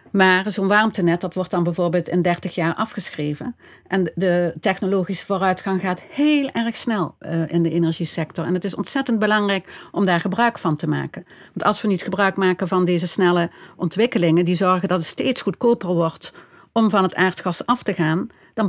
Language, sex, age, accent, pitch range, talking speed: Dutch, female, 50-69, Dutch, 175-210 Hz, 190 wpm